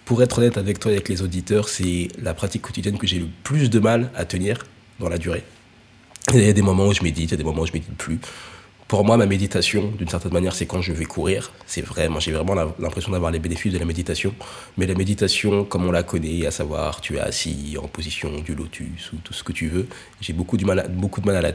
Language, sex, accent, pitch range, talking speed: French, male, French, 90-110 Hz, 265 wpm